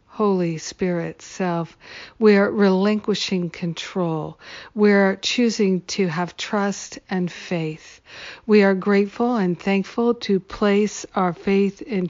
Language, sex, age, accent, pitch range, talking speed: English, female, 60-79, American, 180-205 Hz, 115 wpm